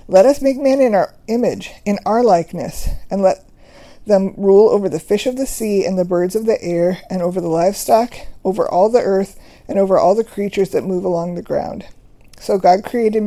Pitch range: 180-215 Hz